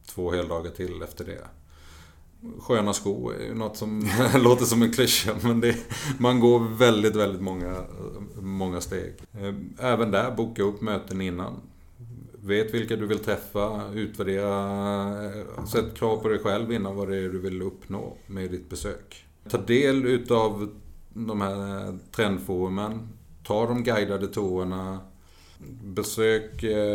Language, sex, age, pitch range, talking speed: Swedish, male, 30-49, 90-110 Hz, 140 wpm